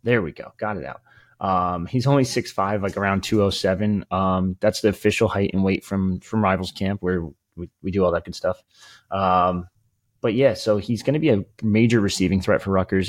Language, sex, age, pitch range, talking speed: English, male, 20-39, 95-110 Hz, 210 wpm